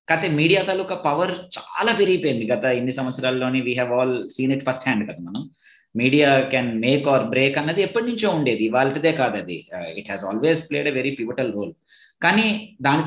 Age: 30-49